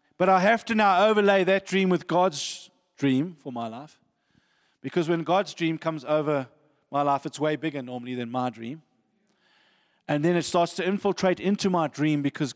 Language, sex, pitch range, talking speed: English, male, 140-180 Hz, 185 wpm